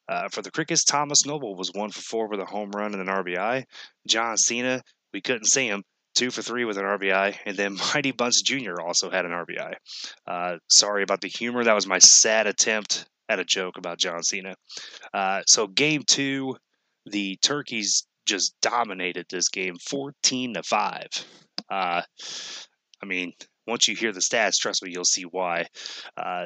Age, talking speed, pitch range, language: 20-39, 185 wpm, 95-120 Hz, English